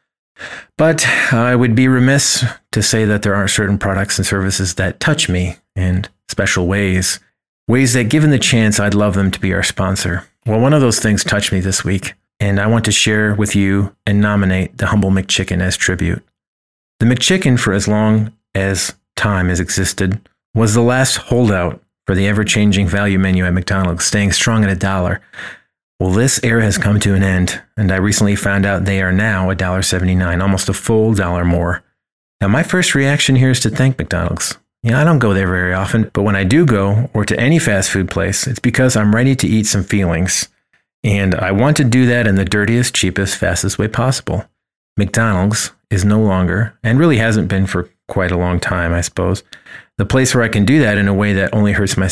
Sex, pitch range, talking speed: male, 95-115 Hz, 210 wpm